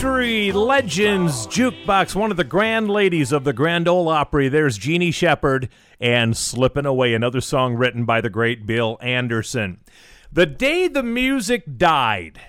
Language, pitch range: English, 135-180 Hz